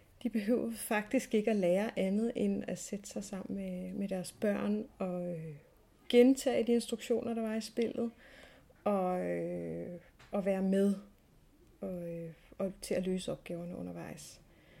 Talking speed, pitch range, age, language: 130 wpm, 190-225 Hz, 30-49, Danish